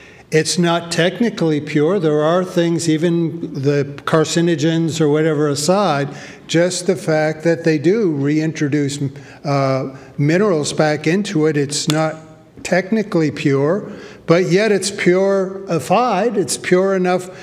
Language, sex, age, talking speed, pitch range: English, male, 60-79, 125 wpm, 155-195 Hz